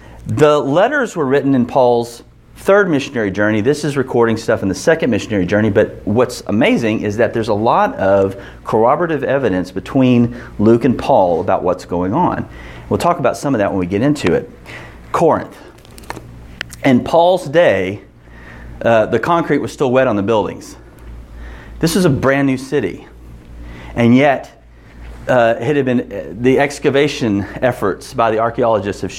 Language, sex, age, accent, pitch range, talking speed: English, male, 40-59, American, 95-140 Hz, 165 wpm